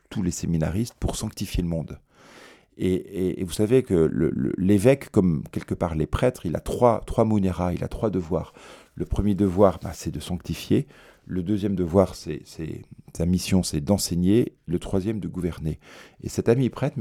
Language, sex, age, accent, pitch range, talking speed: French, male, 40-59, French, 85-105 Hz, 190 wpm